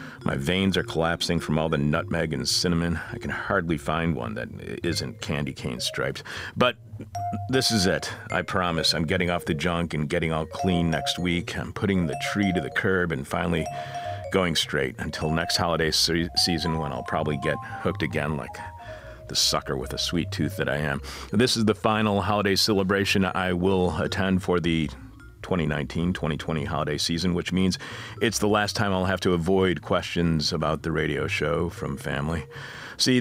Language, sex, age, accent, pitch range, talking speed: English, male, 50-69, American, 80-100 Hz, 185 wpm